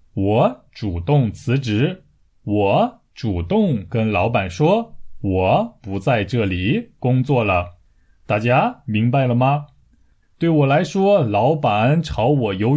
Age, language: 20-39, Chinese